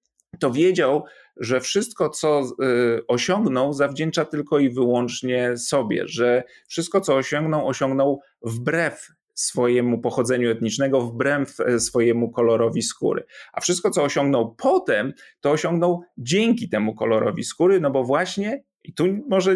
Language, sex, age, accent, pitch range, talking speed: Polish, male, 30-49, native, 120-160 Hz, 125 wpm